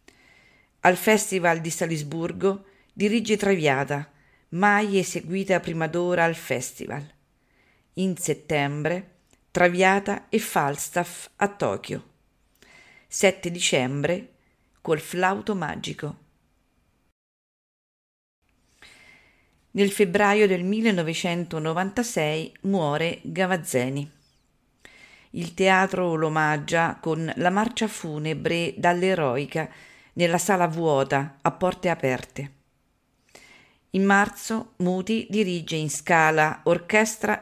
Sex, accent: female, Italian